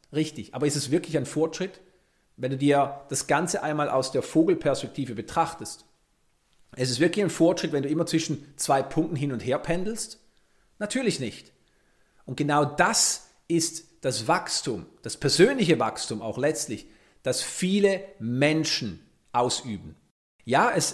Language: German